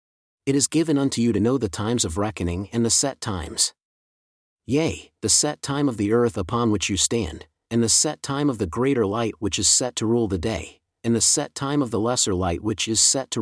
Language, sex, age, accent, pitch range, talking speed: English, male, 40-59, American, 100-125 Hz, 235 wpm